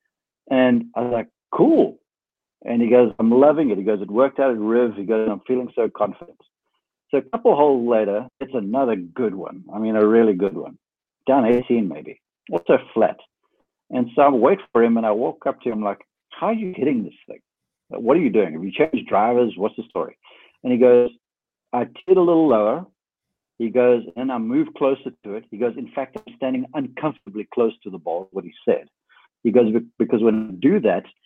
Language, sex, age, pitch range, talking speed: English, male, 60-79, 110-135 Hz, 215 wpm